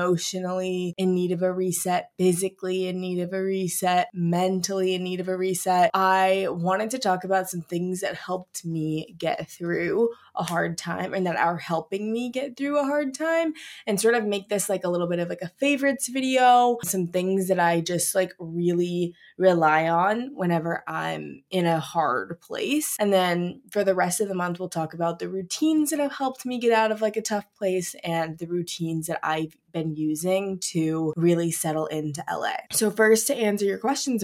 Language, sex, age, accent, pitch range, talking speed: English, female, 20-39, American, 170-210 Hz, 200 wpm